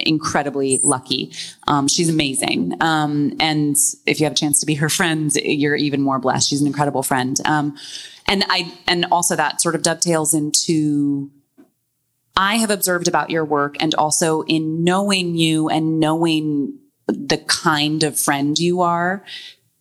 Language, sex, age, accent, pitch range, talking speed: English, female, 20-39, American, 150-185 Hz, 160 wpm